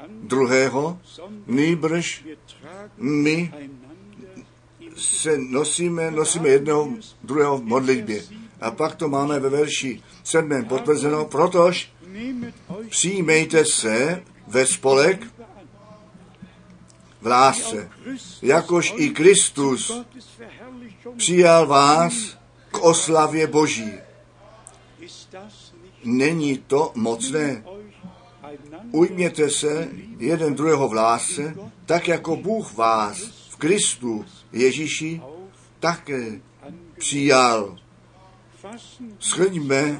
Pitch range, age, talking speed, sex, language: 135-175 Hz, 50-69, 75 wpm, male, Czech